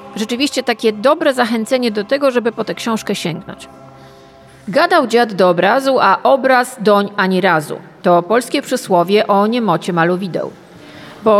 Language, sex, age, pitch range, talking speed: Polish, female, 40-59, 200-260 Hz, 140 wpm